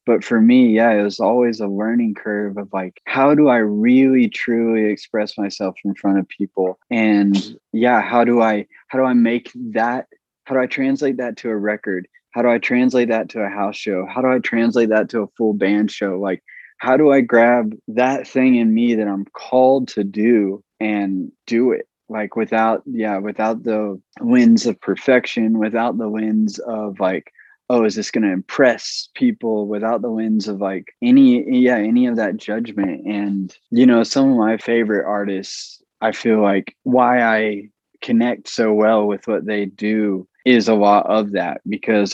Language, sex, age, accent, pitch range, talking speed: English, male, 20-39, American, 105-120 Hz, 190 wpm